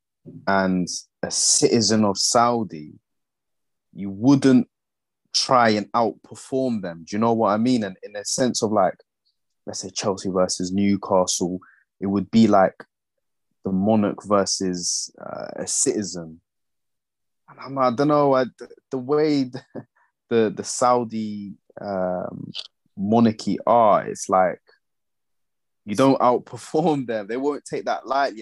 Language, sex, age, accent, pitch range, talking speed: English, male, 20-39, British, 95-130 Hz, 135 wpm